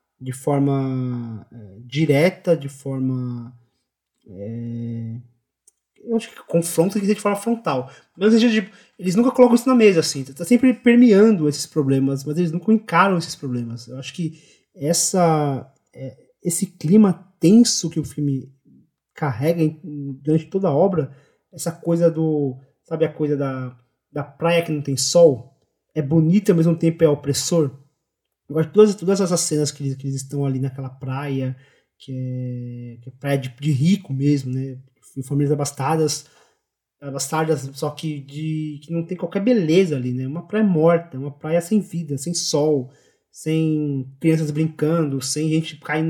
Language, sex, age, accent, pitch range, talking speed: Portuguese, male, 20-39, Brazilian, 135-170 Hz, 155 wpm